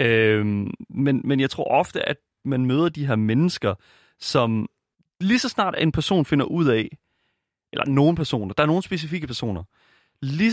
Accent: native